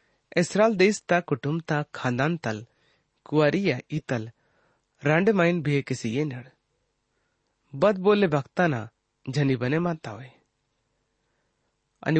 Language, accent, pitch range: English, Indian, 120-180 Hz